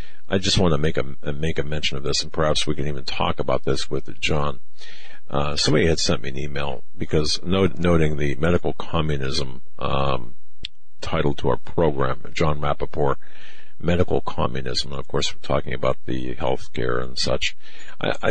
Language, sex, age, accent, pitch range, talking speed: English, male, 50-69, American, 70-85 Hz, 175 wpm